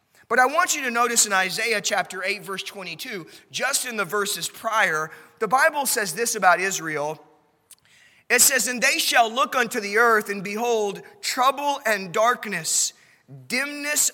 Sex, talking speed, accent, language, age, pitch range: male, 160 wpm, American, English, 30-49, 195-280 Hz